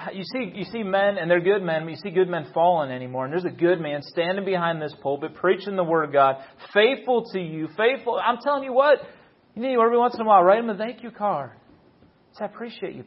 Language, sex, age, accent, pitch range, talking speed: English, male, 30-49, American, 155-200 Hz, 255 wpm